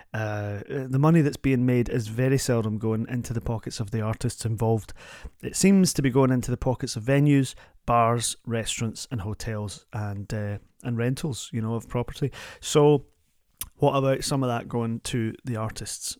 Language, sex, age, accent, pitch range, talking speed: English, male, 30-49, British, 115-140 Hz, 180 wpm